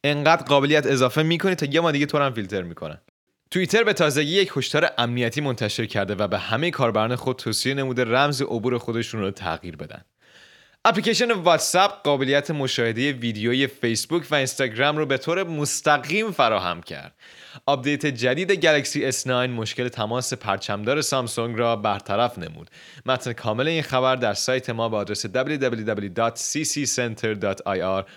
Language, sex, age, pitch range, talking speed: Persian, male, 30-49, 115-150 Hz, 145 wpm